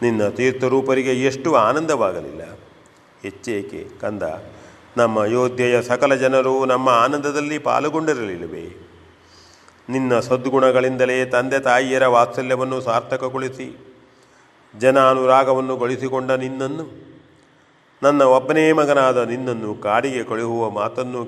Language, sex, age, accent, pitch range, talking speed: Kannada, male, 40-59, native, 115-130 Hz, 80 wpm